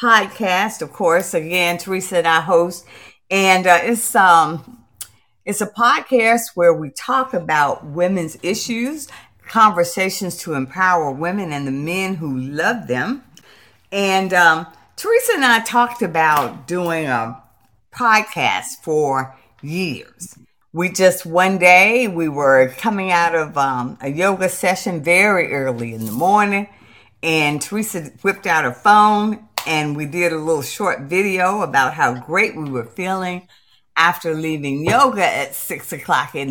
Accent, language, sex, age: American, English, female, 50-69